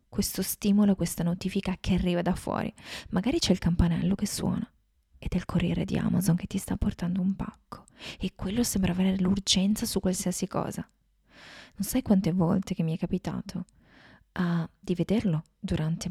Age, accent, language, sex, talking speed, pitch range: 20-39, native, Italian, female, 170 wpm, 175-205 Hz